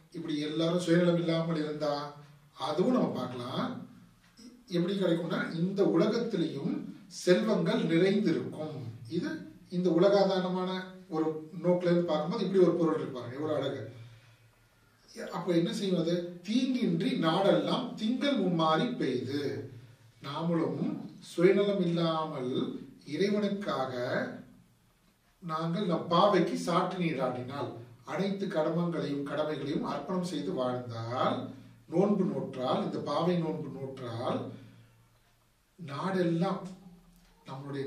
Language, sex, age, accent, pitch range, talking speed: Tamil, male, 40-59, native, 135-190 Hz, 80 wpm